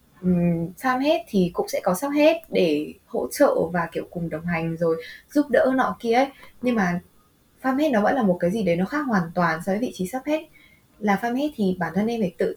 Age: 20-39